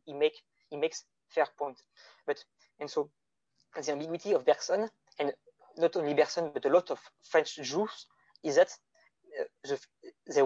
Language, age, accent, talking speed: English, 20-39, French, 150 wpm